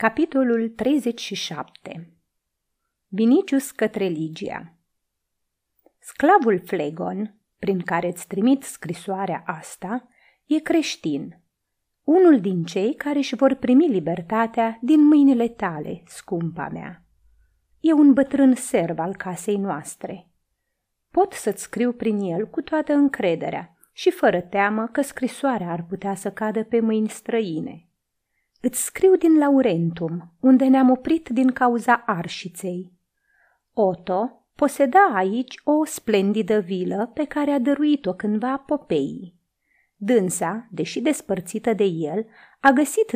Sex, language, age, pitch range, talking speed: female, Romanian, 30-49, 185-270 Hz, 115 wpm